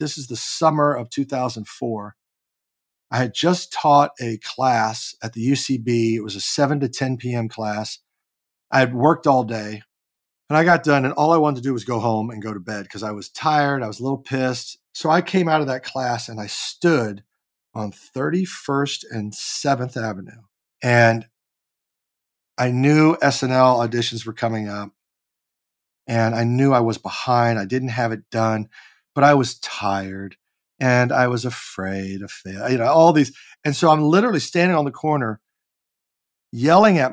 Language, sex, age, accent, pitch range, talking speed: English, male, 40-59, American, 115-185 Hz, 180 wpm